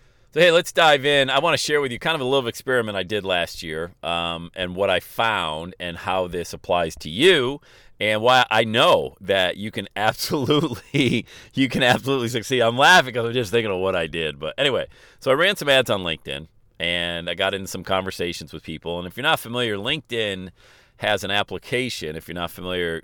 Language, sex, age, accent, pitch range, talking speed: English, male, 40-59, American, 85-120 Hz, 215 wpm